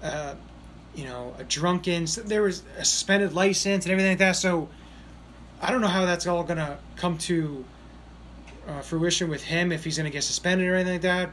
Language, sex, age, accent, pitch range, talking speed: English, male, 20-39, American, 145-190 Hz, 210 wpm